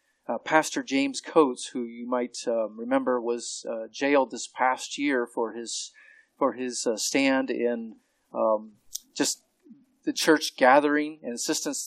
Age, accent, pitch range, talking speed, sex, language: 40-59, American, 125-180 Hz, 145 wpm, male, English